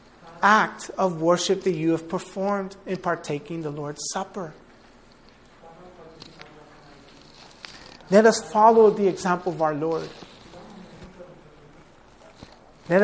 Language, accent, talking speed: English, American, 95 wpm